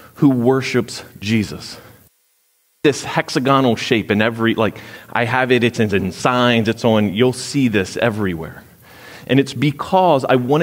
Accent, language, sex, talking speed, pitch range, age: American, English, male, 145 wpm, 115-155 Hz, 30-49